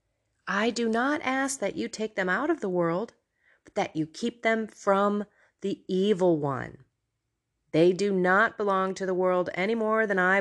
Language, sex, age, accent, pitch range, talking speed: English, female, 30-49, American, 150-205 Hz, 185 wpm